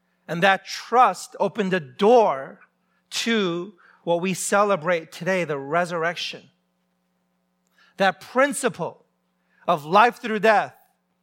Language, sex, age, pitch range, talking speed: English, male, 40-59, 130-195 Hz, 100 wpm